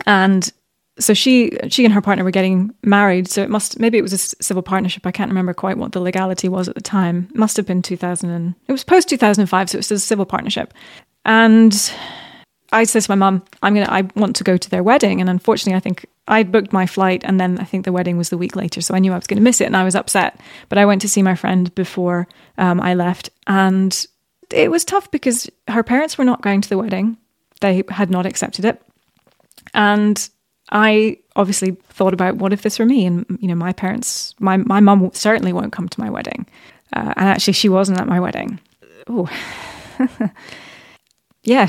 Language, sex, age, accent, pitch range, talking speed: English, female, 20-39, British, 185-220 Hz, 225 wpm